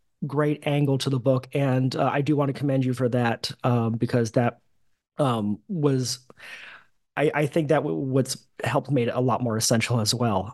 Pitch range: 125-155 Hz